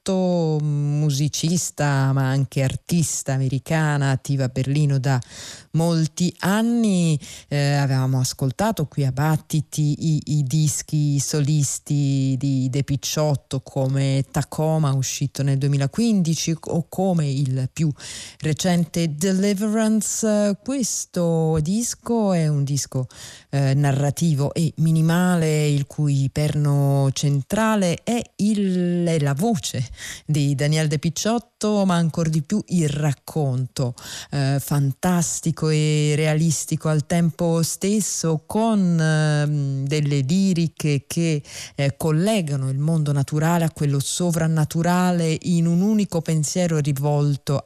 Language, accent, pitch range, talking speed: Italian, native, 140-170 Hz, 110 wpm